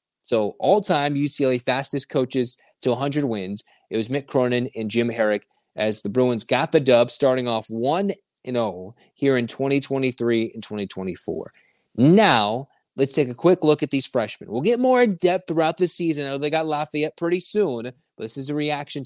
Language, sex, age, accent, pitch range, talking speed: English, male, 30-49, American, 125-155 Hz, 180 wpm